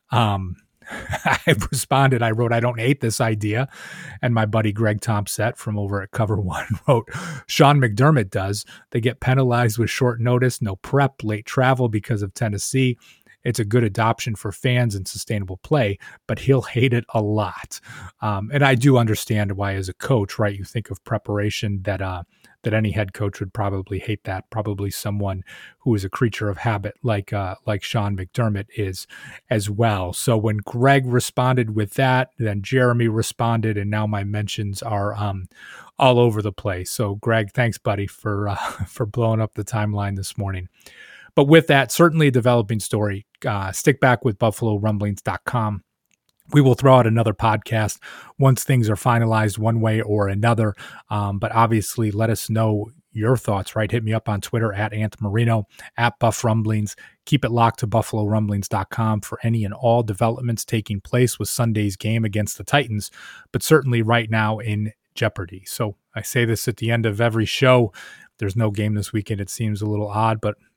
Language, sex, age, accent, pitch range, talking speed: English, male, 30-49, American, 105-120 Hz, 180 wpm